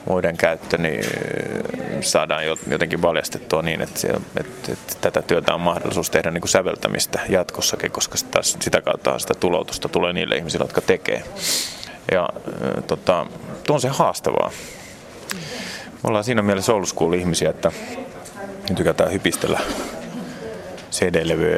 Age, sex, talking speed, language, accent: 30-49, male, 125 wpm, Finnish, native